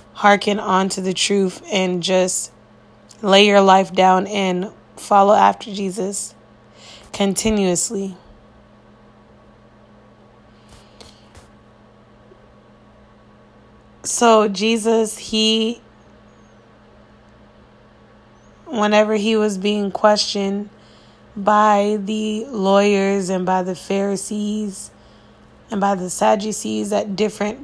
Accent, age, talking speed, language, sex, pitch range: American, 20-39, 80 wpm, English, female, 175-215 Hz